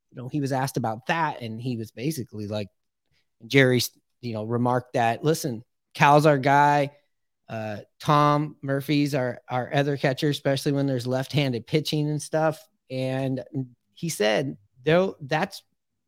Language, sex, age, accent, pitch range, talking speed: English, male, 30-49, American, 130-155 Hz, 150 wpm